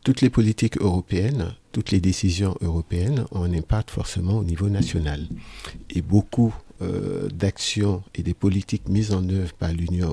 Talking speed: 160 wpm